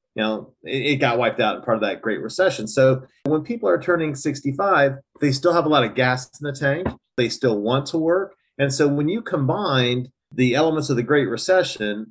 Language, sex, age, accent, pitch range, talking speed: English, male, 40-59, American, 125-155 Hz, 220 wpm